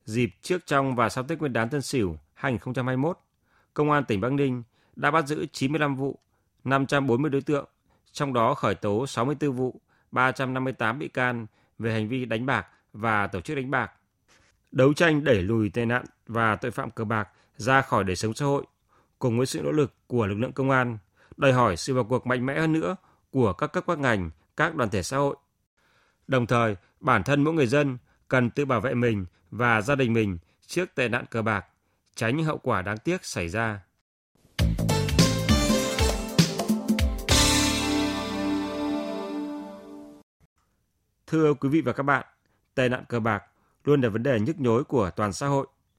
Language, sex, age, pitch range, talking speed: Vietnamese, male, 20-39, 105-140 Hz, 180 wpm